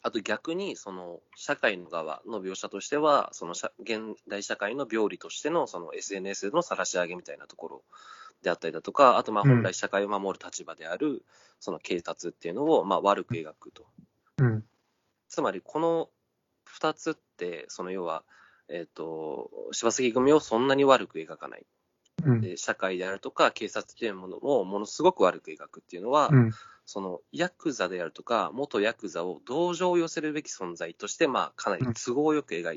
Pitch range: 110-180 Hz